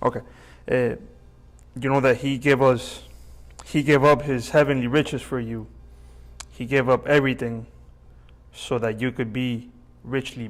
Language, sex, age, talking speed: English, male, 20-39, 150 wpm